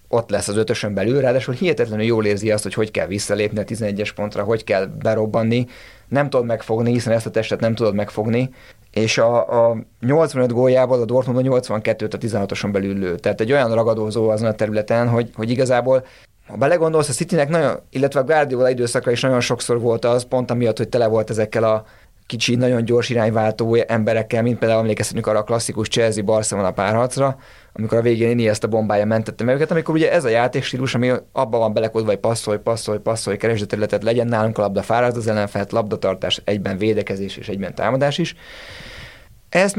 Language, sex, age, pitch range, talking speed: Hungarian, male, 30-49, 110-125 Hz, 190 wpm